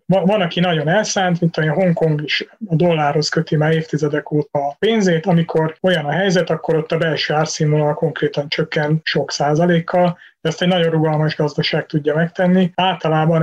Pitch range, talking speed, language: 155-170 Hz, 165 wpm, Hungarian